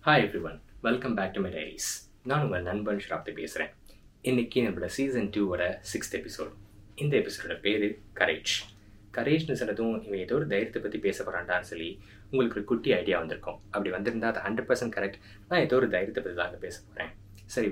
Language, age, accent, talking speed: Tamil, 20-39, native, 175 wpm